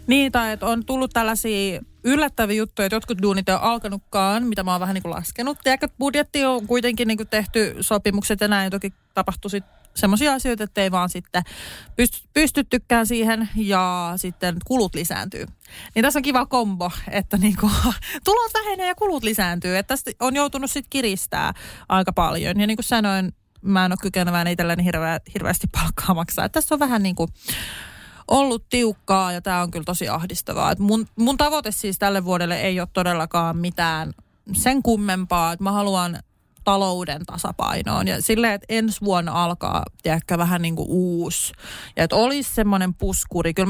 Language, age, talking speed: Finnish, 30-49, 175 wpm